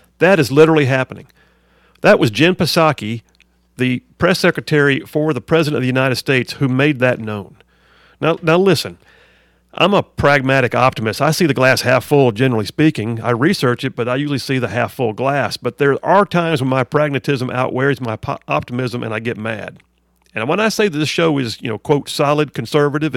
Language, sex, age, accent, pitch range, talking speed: English, male, 50-69, American, 120-155 Hz, 195 wpm